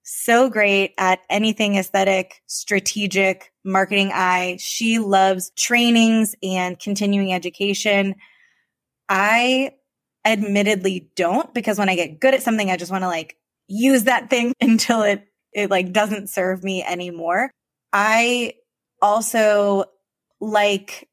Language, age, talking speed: English, 20-39, 120 wpm